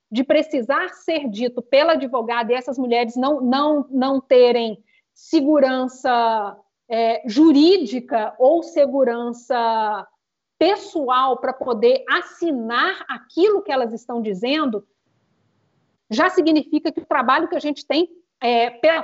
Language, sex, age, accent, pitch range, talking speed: Portuguese, female, 40-59, Brazilian, 255-325 Hz, 110 wpm